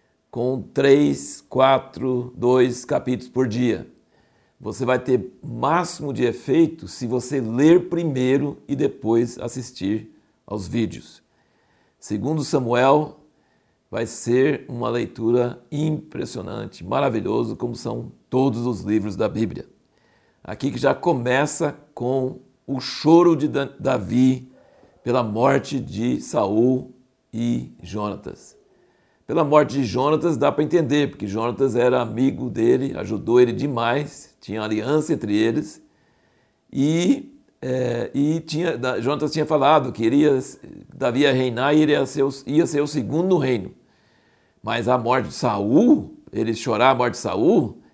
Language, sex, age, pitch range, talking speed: Portuguese, male, 60-79, 120-150 Hz, 130 wpm